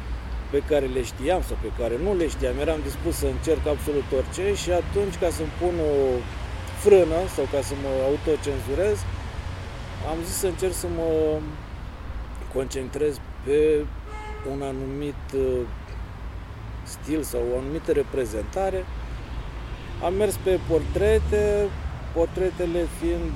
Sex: male